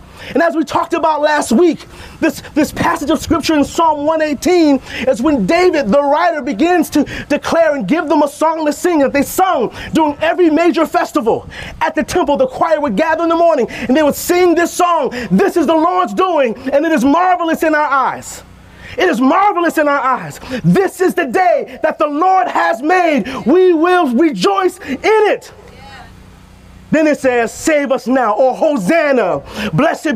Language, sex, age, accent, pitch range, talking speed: English, male, 30-49, American, 275-330 Hz, 185 wpm